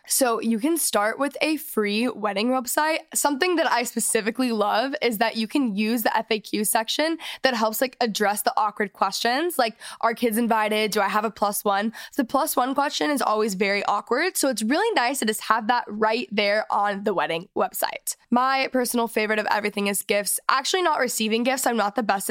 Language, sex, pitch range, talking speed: English, female, 215-270 Hz, 205 wpm